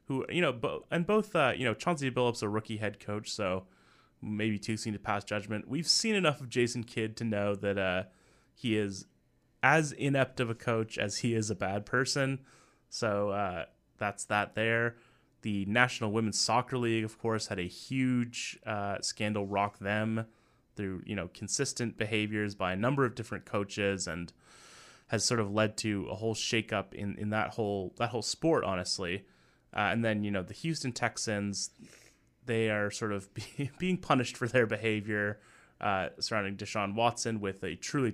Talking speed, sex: 180 wpm, male